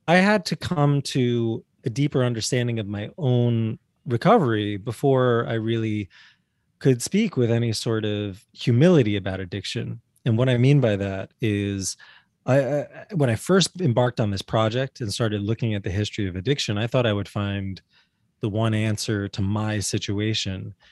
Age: 20-39